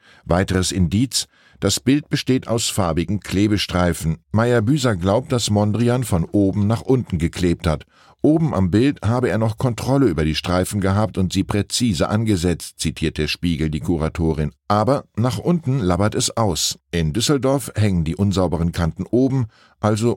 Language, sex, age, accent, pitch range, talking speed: German, male, 10-29, German, 85-120 Hz, 155 wpm